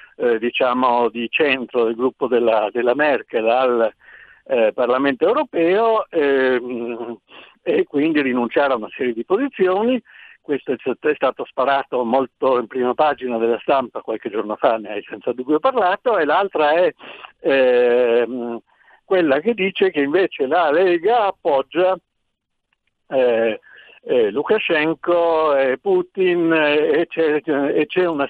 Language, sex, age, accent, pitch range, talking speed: Italian, male, 60-79, native, 125-180 Hz, 125 wpm